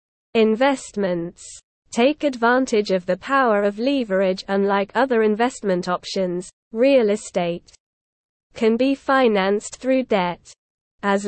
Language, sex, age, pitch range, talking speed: English, female, 20-39, 190-250 Hz, 105 wpm